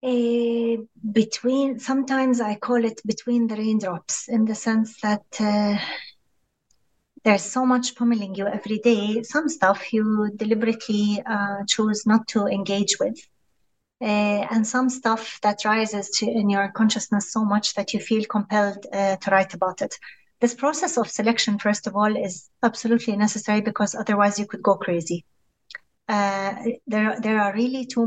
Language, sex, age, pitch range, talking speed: English, female, 30-49, 200-230 Hz, 160 wpm